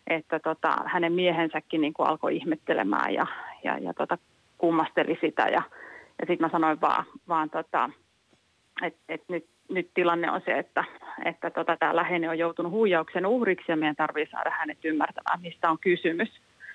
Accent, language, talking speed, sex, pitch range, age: native, Finnish, 160 wpm, female, 160-190 Hz, 30-49